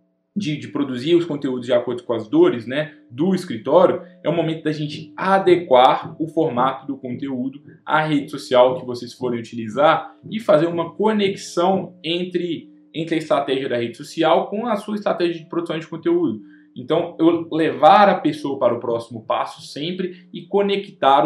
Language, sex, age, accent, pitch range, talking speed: English, male, 20-39, Brazilian, 130-180 Hz, 170 wpm